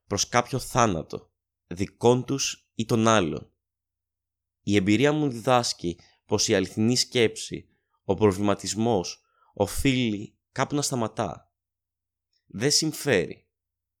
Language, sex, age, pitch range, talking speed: Greek, male, 20-39, 90-120 Hz, 115 wpm